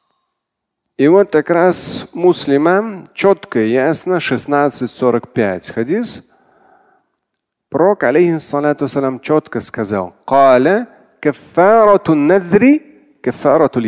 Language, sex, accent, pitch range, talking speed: Russian, male, native, 125-200 Hz, 60 wpm